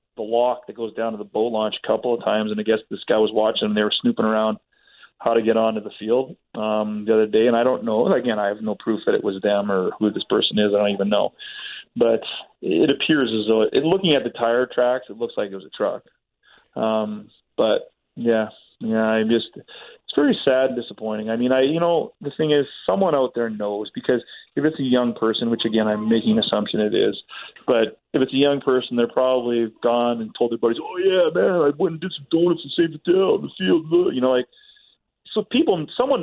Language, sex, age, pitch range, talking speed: English, male, 30-49, 110-150 Hz, 240 wpm